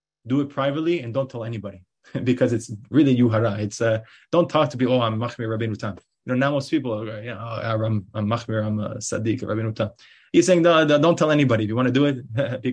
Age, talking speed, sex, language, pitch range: 20-39, 245 wpm, male, English, 115-140 Hz